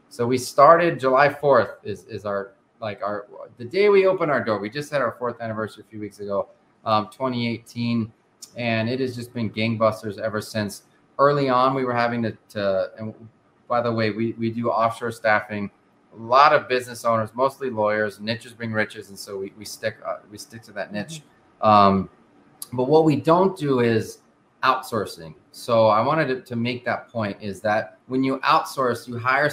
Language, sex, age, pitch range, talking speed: English, male, 30-49, 110-135 Hz, 195 wpm